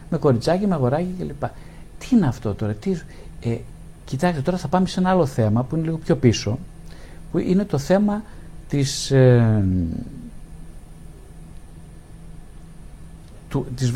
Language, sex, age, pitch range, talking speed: Greek, male, 50-69, 115-170 Hz, 135 wpm